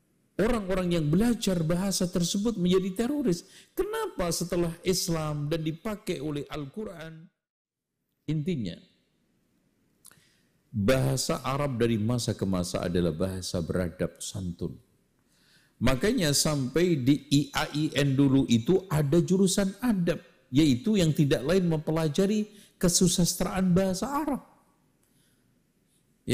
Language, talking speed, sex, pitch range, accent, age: Indonesian, 100 wpm, male, 135-185 Hz, native, 50-69